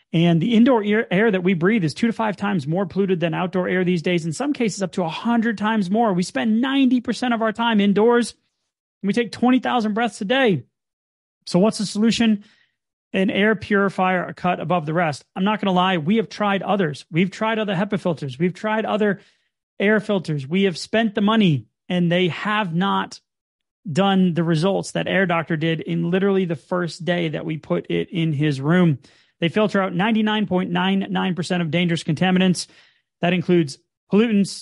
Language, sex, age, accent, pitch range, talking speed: English, male, 30-49, American, 175-215 Hz, 190 wpm